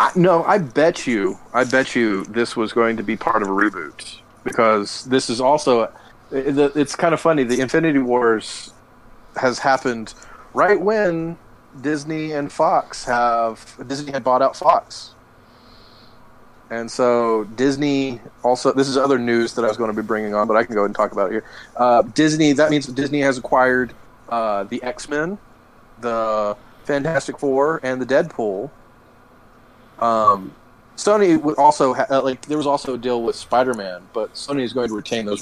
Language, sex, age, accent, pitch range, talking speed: English, male, 30-49, American, 110-135 Hz, 175 wpm